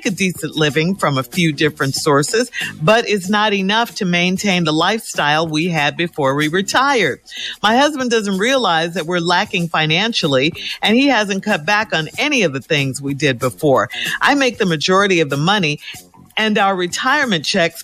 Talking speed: 180 wpm